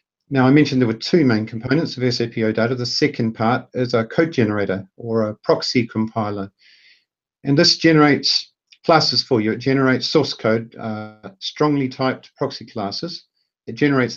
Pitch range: 115-140 Hz